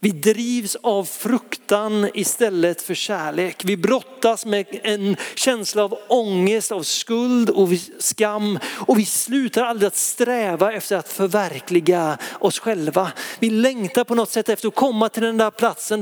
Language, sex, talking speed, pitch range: Swedish, male, 155 wpm, 185-230 Hz